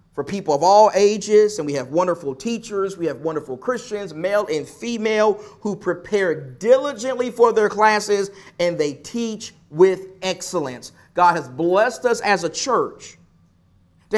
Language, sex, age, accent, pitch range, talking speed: English, male, 40-59, American, 135-205 Hz, 150 wpm